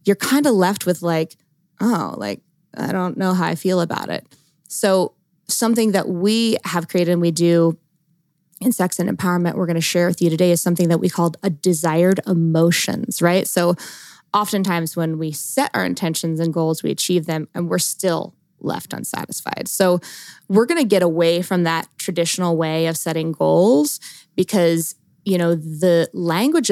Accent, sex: American, female